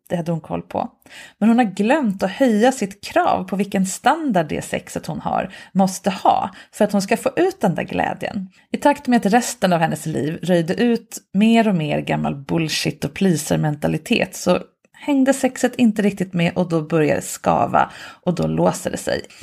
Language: English